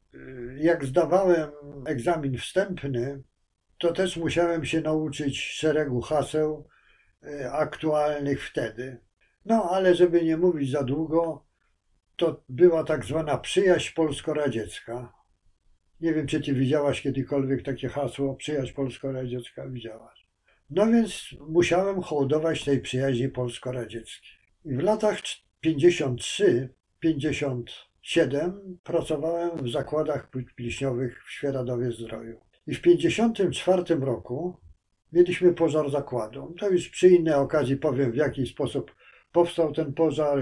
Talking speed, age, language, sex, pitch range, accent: 115 wpm, 50-69, Polish, male, 130-170 Hz, native